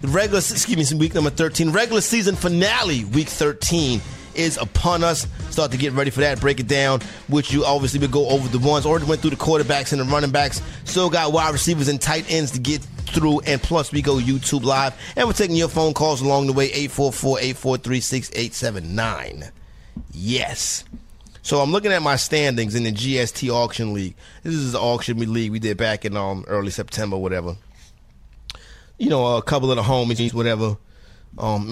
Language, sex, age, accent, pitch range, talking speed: English, male, 30-49, American, 110-145 Hz, 190 wpm